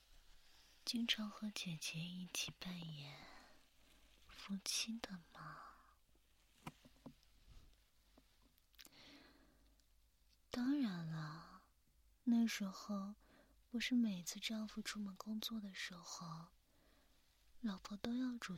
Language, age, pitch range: Chinese, 20-39, 175-230 Hz